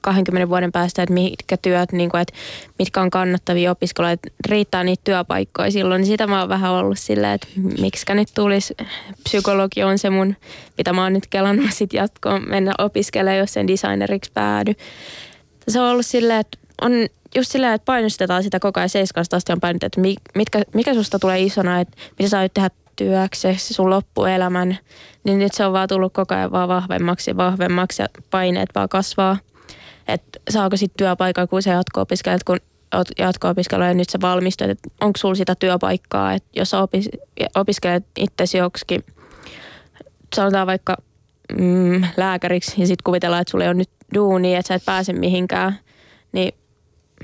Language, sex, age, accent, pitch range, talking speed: Finnish, female, 20-39, native, 180-195 Hz, 165 wpm